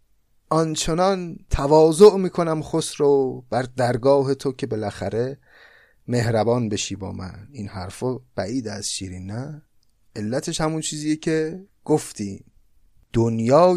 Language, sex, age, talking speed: Persian, male, 30-49, 110 wpm